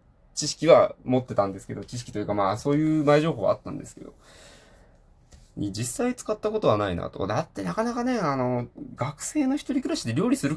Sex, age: male, 20-39